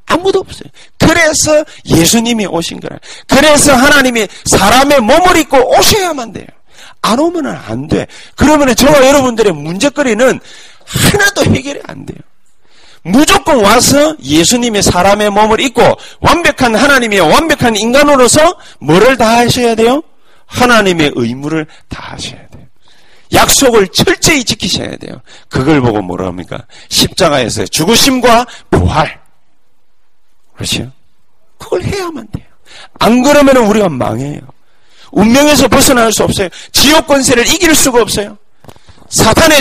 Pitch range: 205-290 Hz